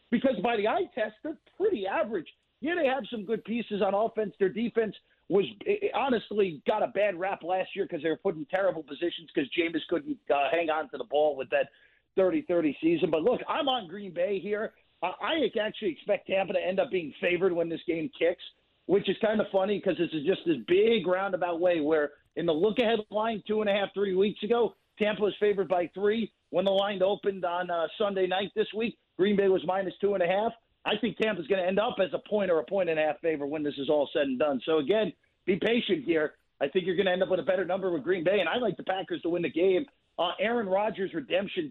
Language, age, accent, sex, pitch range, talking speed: English, 50-69, American, male, 170-215 Hz, 245 wpm